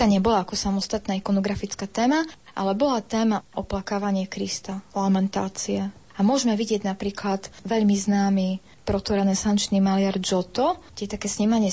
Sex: female